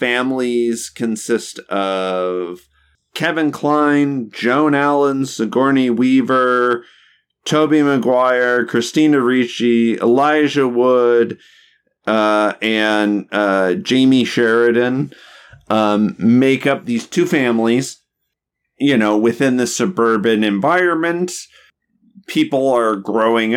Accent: American